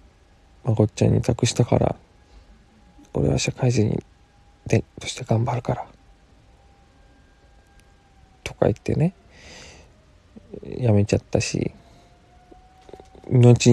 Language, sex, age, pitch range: Japanese, male, 20-39, 90-125 Hz